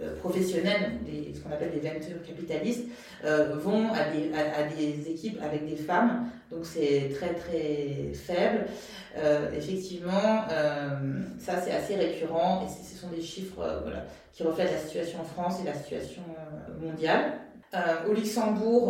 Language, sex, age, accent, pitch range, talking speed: French, female, 30-49, French, 155-190 Hz, 160 wpm